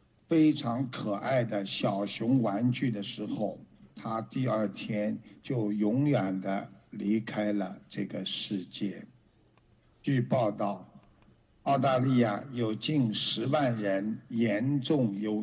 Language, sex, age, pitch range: Chinese, male, 60-79, 105-135 Hz